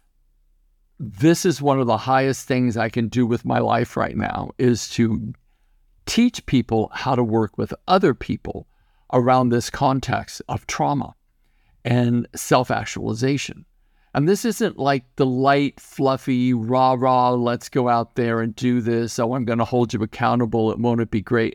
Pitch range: 115-150 Hz